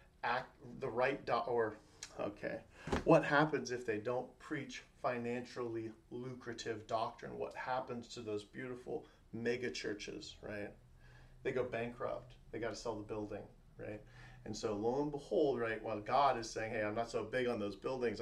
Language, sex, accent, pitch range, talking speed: English, male, American, 105-130 Hz, 170 wpm